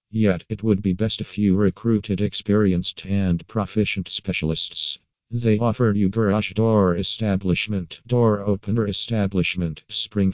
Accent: American